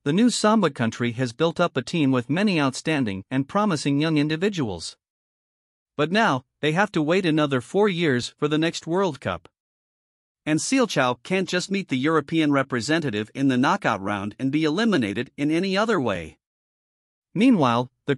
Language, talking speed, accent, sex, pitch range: English, 170 wpm, American, male, 125-175 Hz